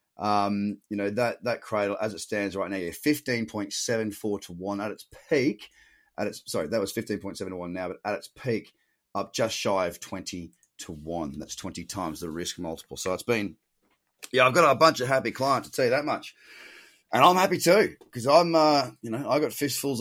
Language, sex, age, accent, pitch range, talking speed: English, male, 30-49, Australian, 95-130 Hz, 230 wpm